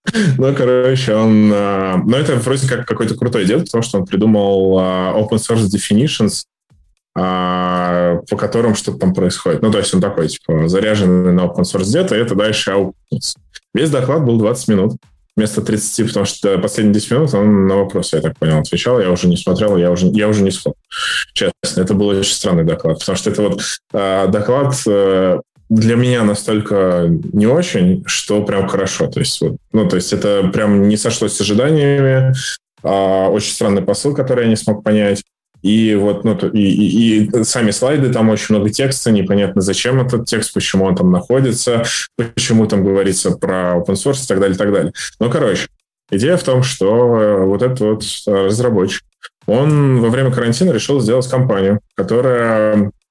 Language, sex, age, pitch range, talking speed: Russian, male, 20-39, 100-125 Hz, 175 wpm